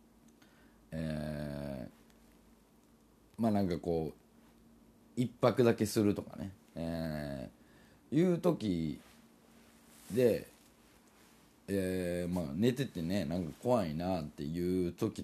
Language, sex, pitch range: Japanese, male, 80-115 Hz